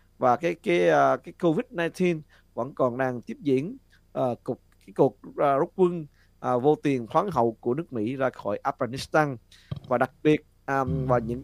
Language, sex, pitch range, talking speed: Vietnamese, male, 115-145 Hz, 170 wpm